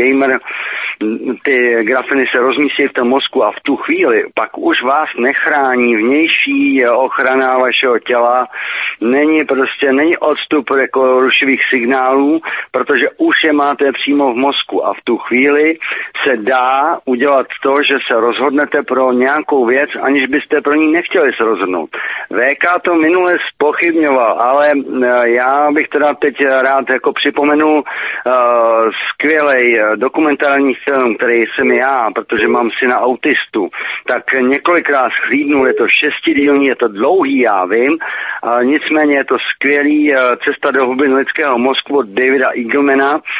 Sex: male